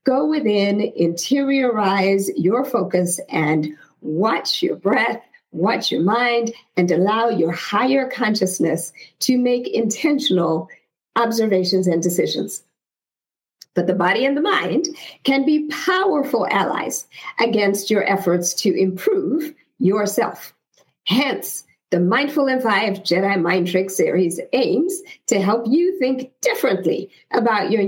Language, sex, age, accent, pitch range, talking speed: English, female, 50-69, American, 190-265 Hz, 120 wpm